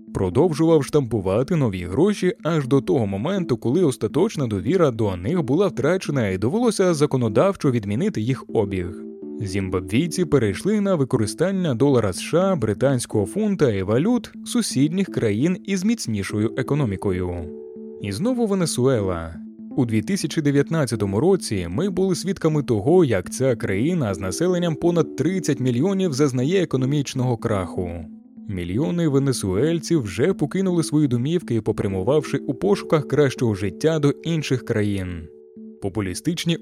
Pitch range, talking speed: 110-165 Hz, 120 wpm